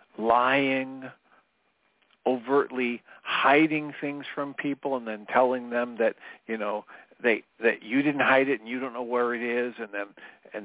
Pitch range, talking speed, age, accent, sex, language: 115-140 Hz, 165 wpm, 50-69, American, male, English